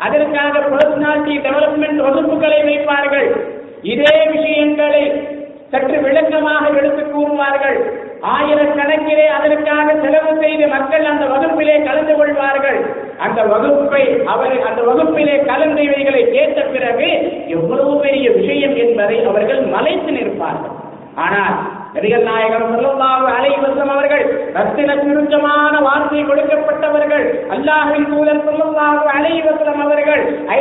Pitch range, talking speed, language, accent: 270-310 Hz, 75 wpm, English, Indian